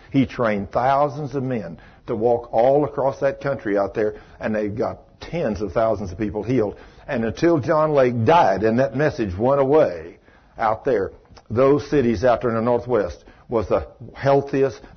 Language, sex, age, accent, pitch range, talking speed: English, male, 60-79, American, 115-170 Hz, 175 wpm